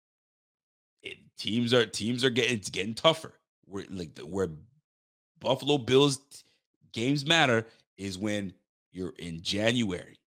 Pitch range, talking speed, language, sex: 105-145 Hz, 115 wpm, English, male